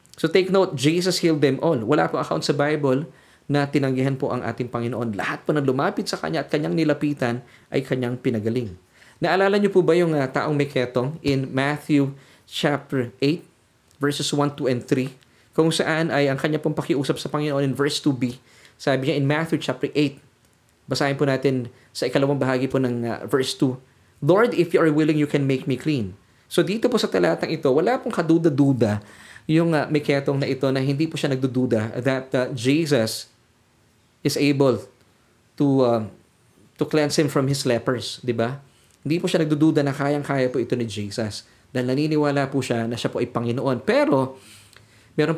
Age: 20-39